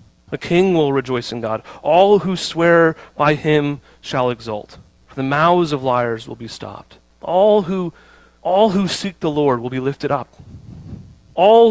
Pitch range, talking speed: 120-185 Hz, 170 wpm